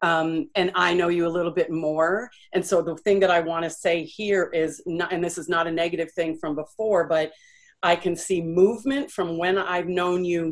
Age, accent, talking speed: 40-59, American, 220 wpm